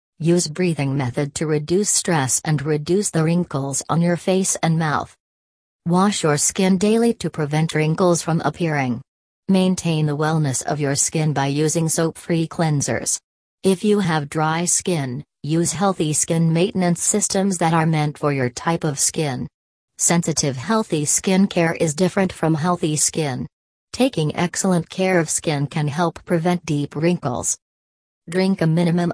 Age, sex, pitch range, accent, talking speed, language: 40-59, female, 150-180 Hz, American, 150 wpm, English